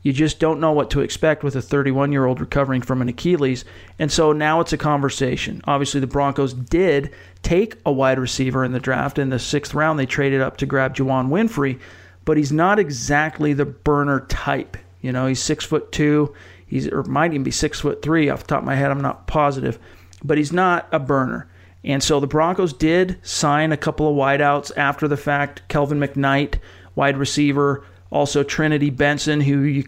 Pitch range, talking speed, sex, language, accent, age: 135-155 Hz, 200 wpm, male, English, American, 40-59